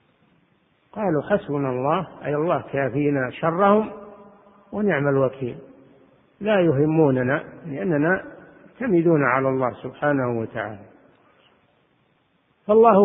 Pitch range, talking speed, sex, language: 135-180 Hz, 85 wpm, male, Arabic